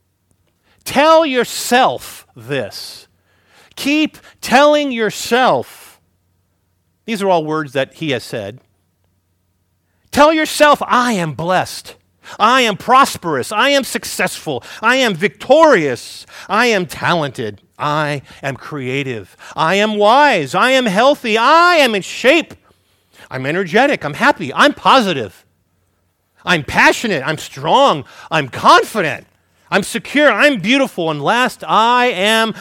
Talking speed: 120 wpm